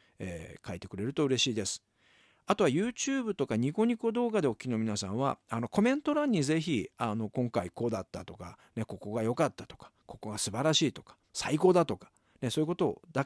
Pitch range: 105-155 Hz